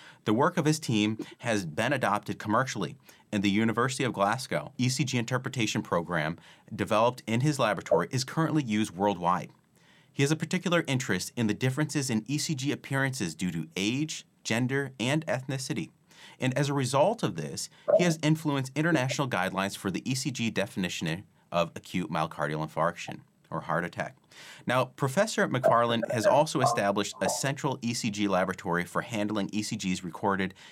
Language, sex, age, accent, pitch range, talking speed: English, male, 30-49, American, 100-140 Hz, 150 wpm